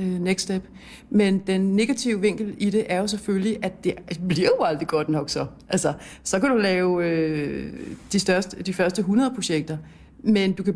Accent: native